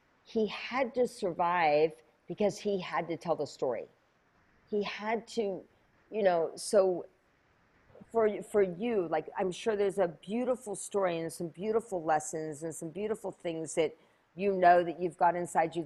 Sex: female